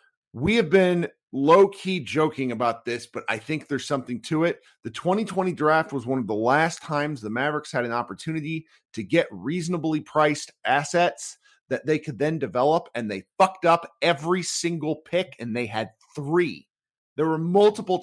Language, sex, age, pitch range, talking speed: English, male, 40-59, 130-170 Hz, 175 wpm